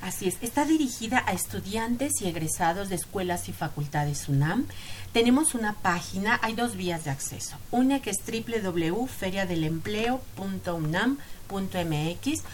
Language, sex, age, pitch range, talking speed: Spanish, female, 40-59, 170-225 Hz, 120 wpm